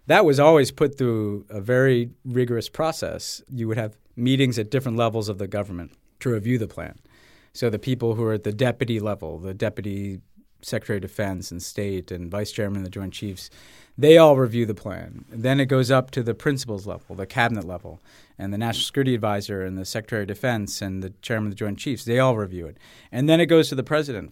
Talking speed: 220 wpm